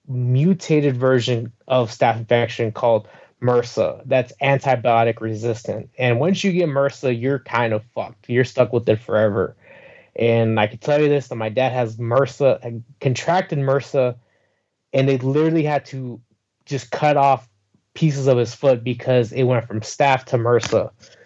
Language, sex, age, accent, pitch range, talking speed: English, male, 20-39, American, 120-145 Hz, 160 wpm